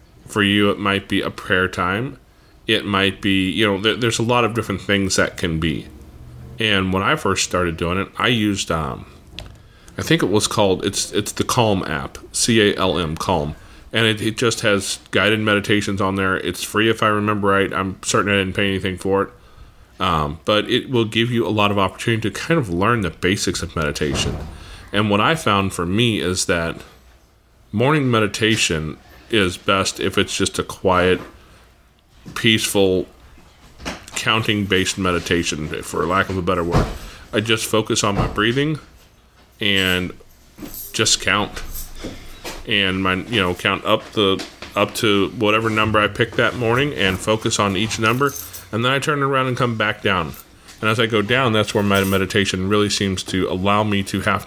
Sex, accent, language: male, American, English